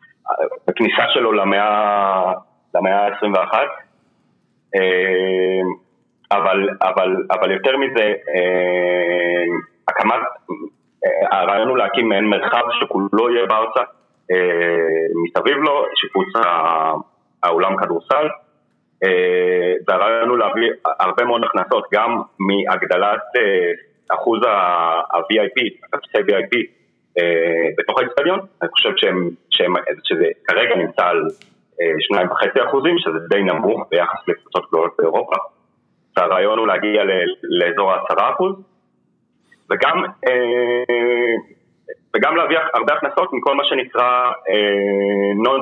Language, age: Hebrew, 30-49